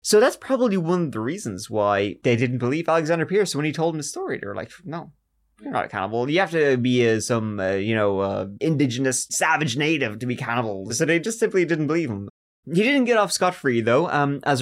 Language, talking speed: English, 240 wpm